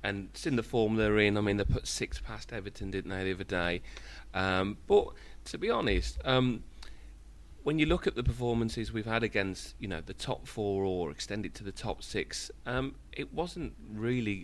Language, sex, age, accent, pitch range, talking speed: English, male, 30-49, British, 95-120 Hz, 210 wpm